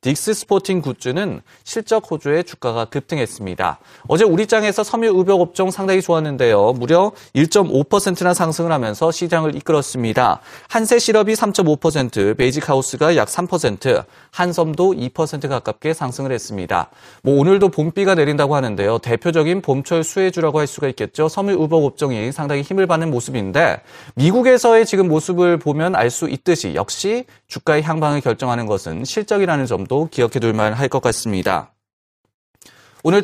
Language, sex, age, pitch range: Korean, male, 30-49, 130-190 Hz